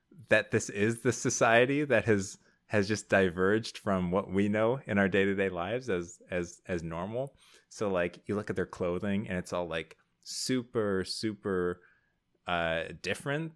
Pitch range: 95-120 Hz